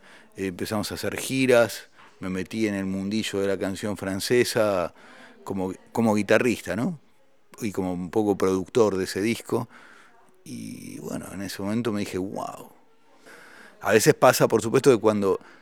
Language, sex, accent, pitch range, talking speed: Spanish, male, Argentinian, 95-125 Hz, 155 wpm